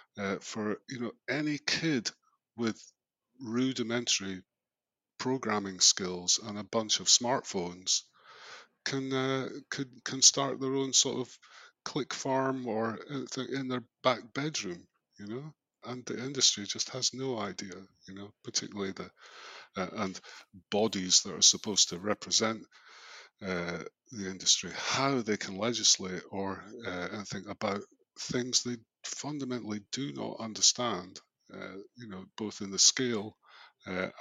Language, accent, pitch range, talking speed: English, British, 95-130 Hz, 135 wpm